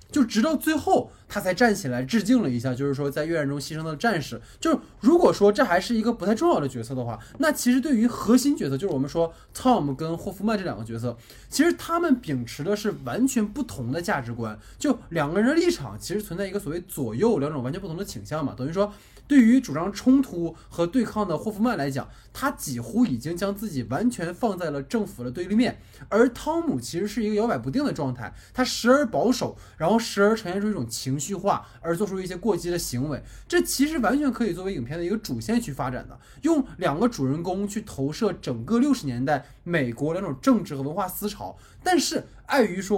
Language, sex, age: Chinese, male, 20-39